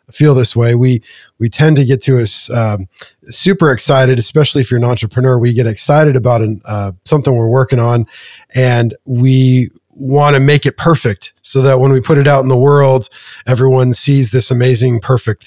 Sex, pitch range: male, 115-135 Hz